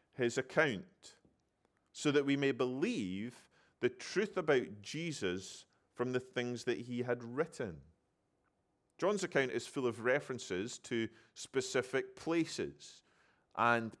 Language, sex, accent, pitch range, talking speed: English, male, British, 120-155 Hz, 120 wpm